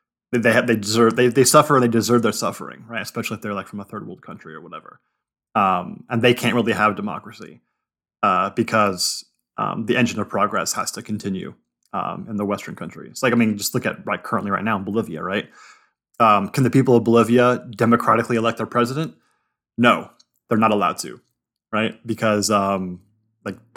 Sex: male